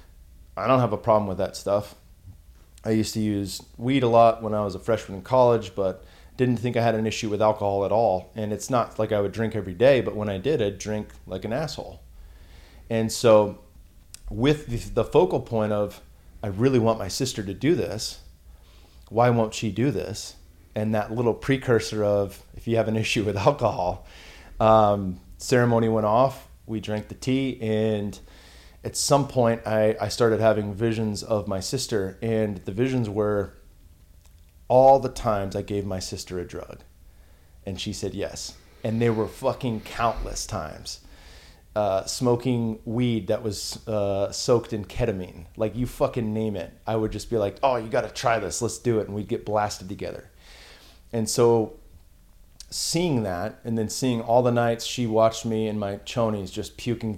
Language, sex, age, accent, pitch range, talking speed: English, male, 30-49, American, 95-115 Hz, 185 wpm